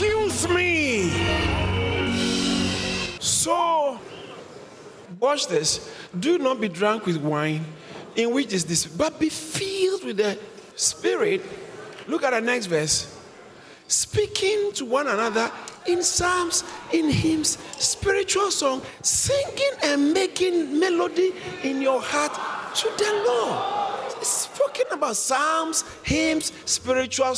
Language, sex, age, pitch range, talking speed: English, male, 50-69, 255-375 Hz, 110 wpm